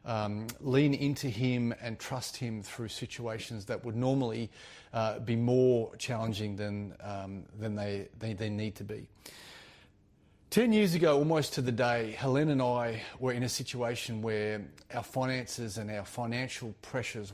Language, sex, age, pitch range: English, male, 30-49, 110-130 Hz